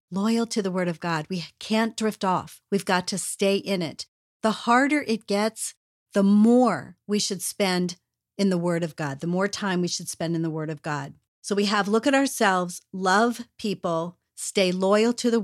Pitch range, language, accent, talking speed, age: 185-230 Hz, English, American, 205 wpm, 40-59